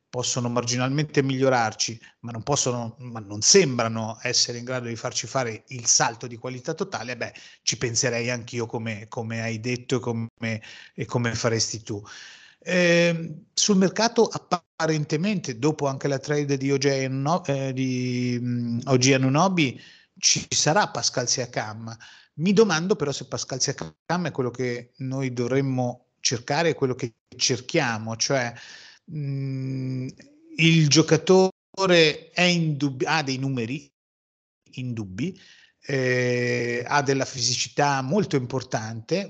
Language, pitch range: Italian, 120-155 Hz